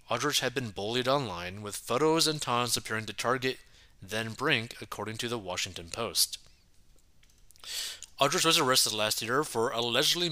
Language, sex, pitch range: English, male, 100-130 Hz